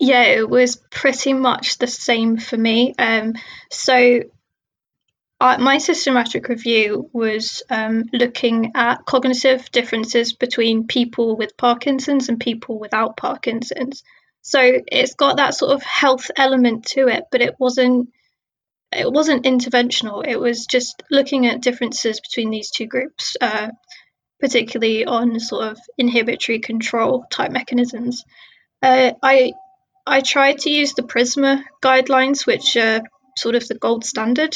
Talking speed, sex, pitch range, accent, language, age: 140 wpm, female, 235-265 Hz, British, English, 20-39